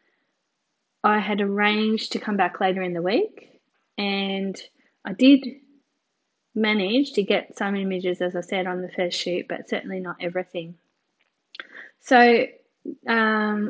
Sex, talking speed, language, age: female, 135 wpm, English, 10-29